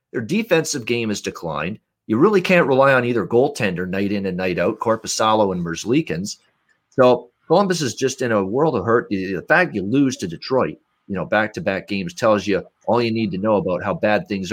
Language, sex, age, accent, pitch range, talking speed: English, male, 40-59, American, 95-145 Hz, 210 wpm